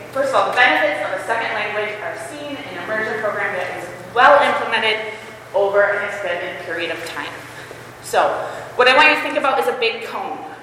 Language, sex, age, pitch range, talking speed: English, female, 20-39, 210-295 Hz, 210 wpm